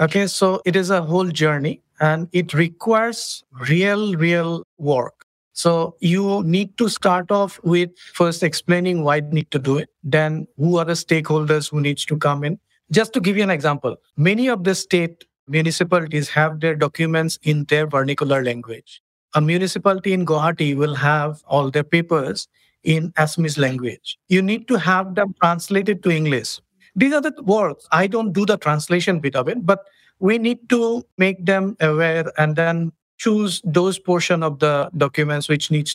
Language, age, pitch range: English, 50-69, 150-185 Hz